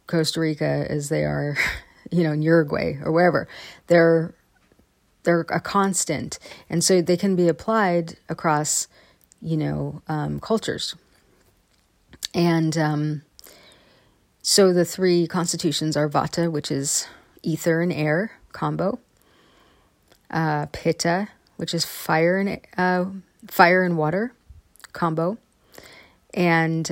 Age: 30-49